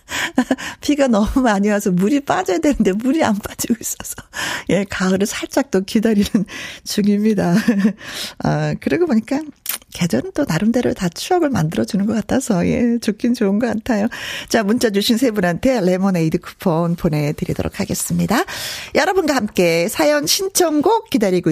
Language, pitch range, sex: Korean, 185-270 Hz, female